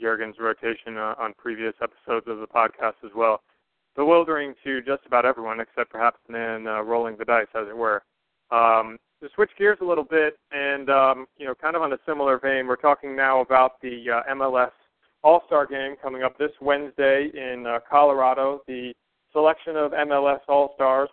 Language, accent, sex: English, American, male